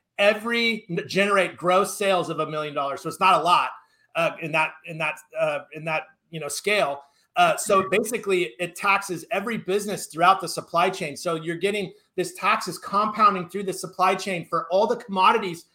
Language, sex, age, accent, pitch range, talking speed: English, male, 30-49, American, 180-235 Hz, 185 wpm